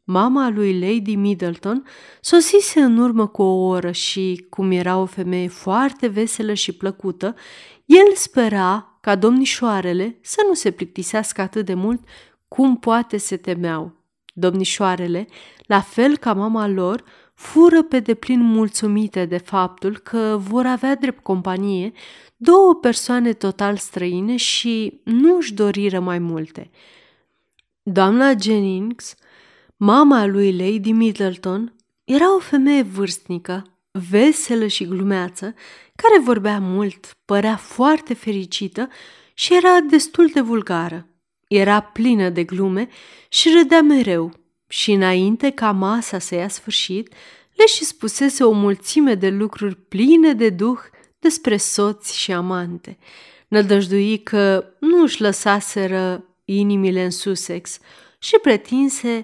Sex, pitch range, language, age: female, 190-245 Hz, Romanian, 30-49